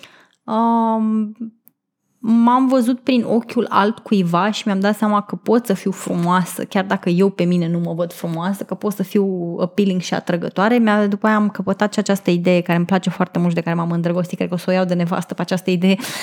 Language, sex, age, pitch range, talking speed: Romanian, female, 20-39, 195-230 Hz, 220 wpm